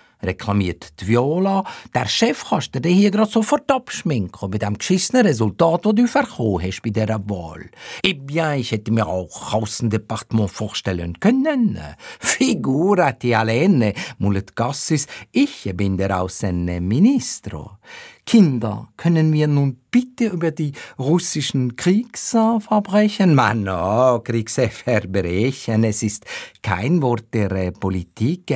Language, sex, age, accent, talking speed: German, male, 50-69, Austrian, 125 wpm